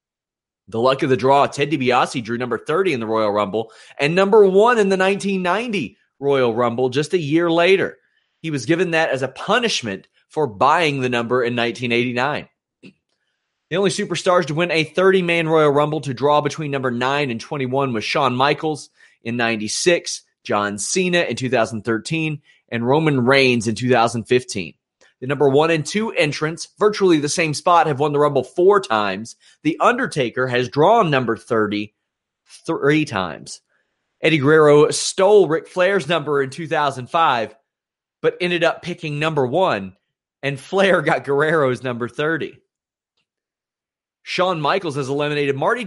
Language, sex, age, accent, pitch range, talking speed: English, male, 30-49, American, 125-170 Hz, 155 wpm